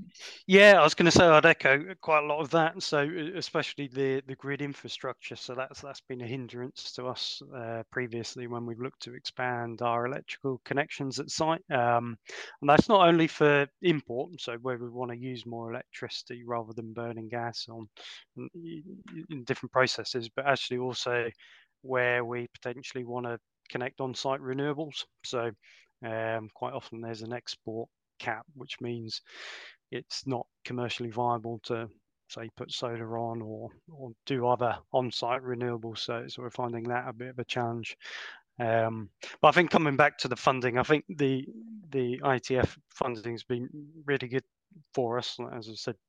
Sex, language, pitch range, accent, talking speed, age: male, English, 115-135 Hz, British, 175 wpm, 20-39